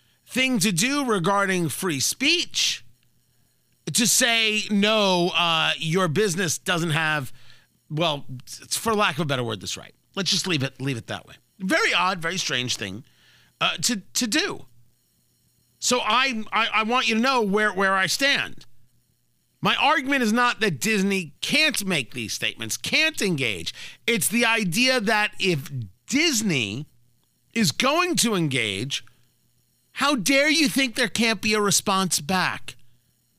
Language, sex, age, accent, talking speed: English, male, 40-59, American, 150 wpm